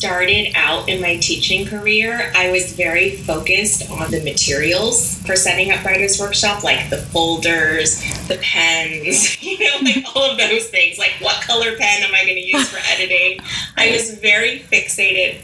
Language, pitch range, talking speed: English, 170-215 Hz, 175 wpm